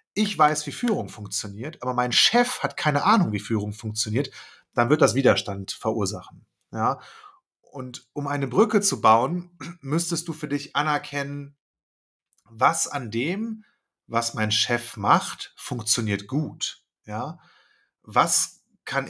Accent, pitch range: German, 115-150 Hz